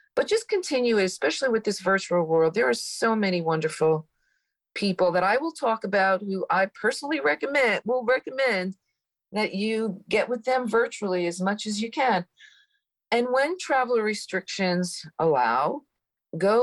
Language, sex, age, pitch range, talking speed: English, female, 40-59, 165-240 Hz, 150 wpm